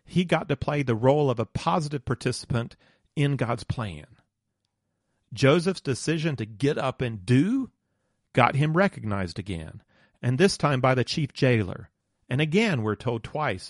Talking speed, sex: 160 wpm, male